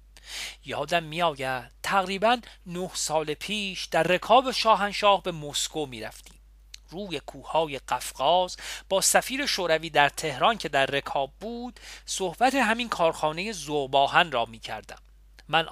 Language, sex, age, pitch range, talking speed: Persian, male, 40-59, 130-195 Hz, 130 wpm